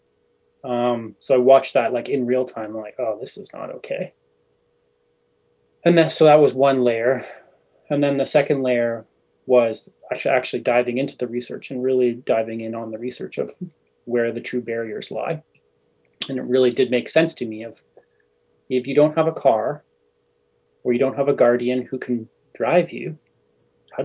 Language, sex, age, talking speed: English, male, 30-49, 180 wpm